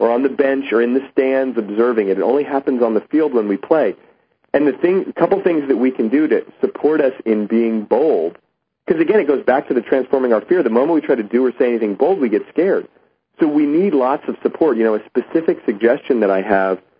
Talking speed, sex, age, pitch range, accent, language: 250 wpm, male, 40-59, 110-160 Hz, American, English